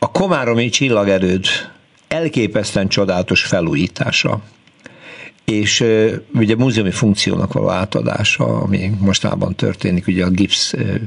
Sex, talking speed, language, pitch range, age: male, 100 wpm, Hungarian, 95-120 Hz, 60-79